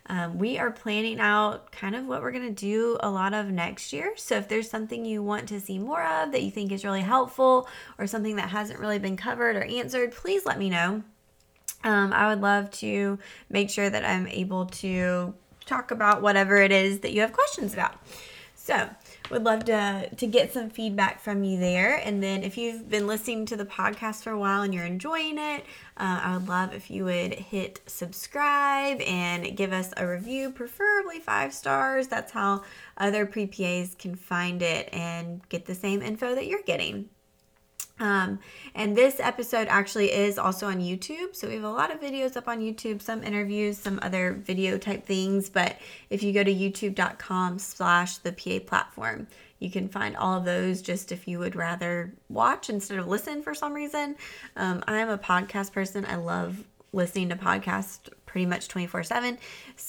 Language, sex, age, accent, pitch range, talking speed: English, female, 20-39, American, 185-225 Hz, 195 wpm